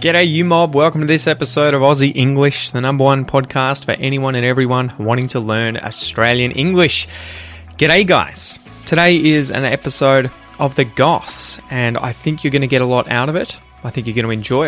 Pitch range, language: 110-140 Hz, English